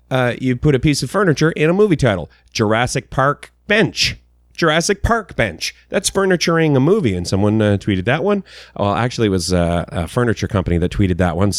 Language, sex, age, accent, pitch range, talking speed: English, male, 30-49, American, 90-135 Hz, 200 wpm